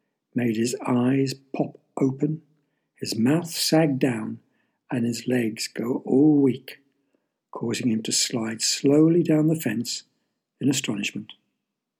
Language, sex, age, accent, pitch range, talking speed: English, male, 60-79, British, 120-145 Hz, 125 wpm